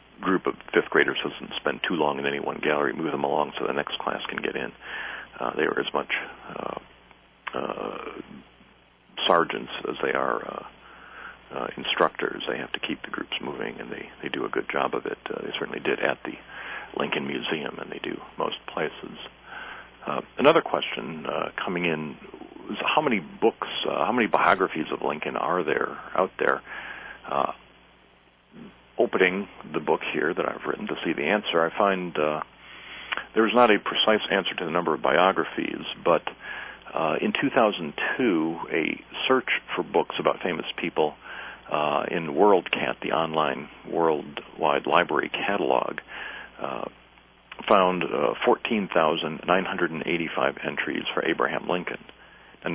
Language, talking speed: English, 160 wpm